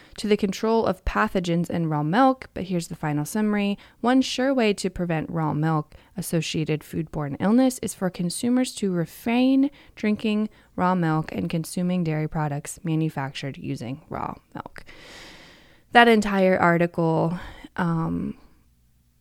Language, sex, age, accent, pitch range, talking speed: English, female, 20-39, American, 160-220 Hz, 130 wpm